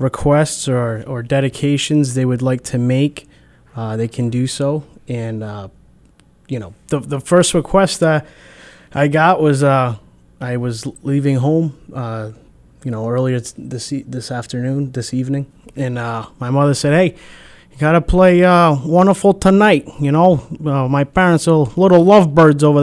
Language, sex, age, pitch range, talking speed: English, male, 20-39, 130-165 Hz, 160 wpm